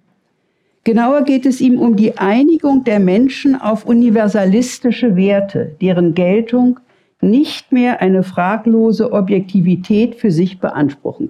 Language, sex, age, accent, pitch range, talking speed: German, female, 60-79, German, 185-245 Hz, 115 wpm